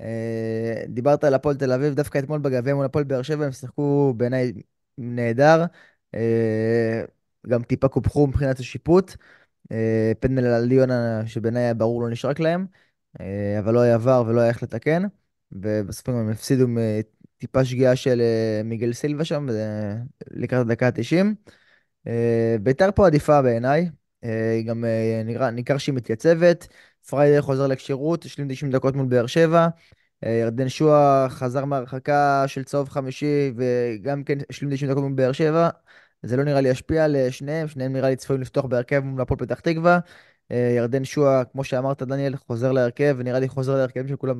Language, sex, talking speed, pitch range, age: Hebrew, male, 150 wpm, 120-145 Hz, 20-39